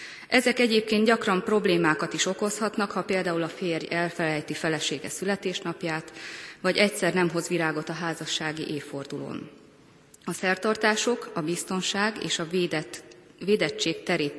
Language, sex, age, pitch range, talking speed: Hungarian, female, 30-49, 160-210 Hz, 120 wpm